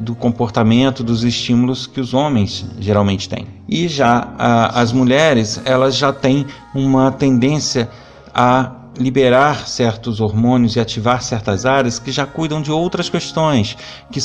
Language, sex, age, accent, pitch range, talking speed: Portuguese, male, 40-59, Brazilian, 115-130 Hz, 140 wpm